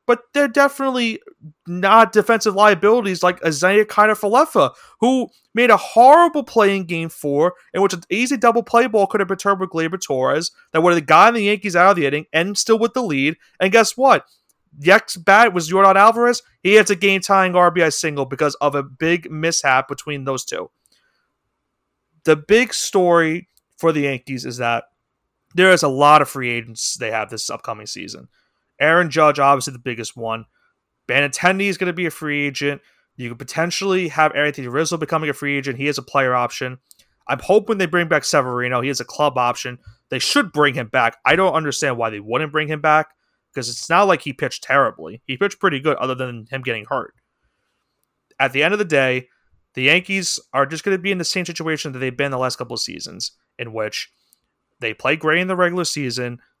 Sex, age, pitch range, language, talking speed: male, 30-49, 135-195 Hz, English, 205 wpm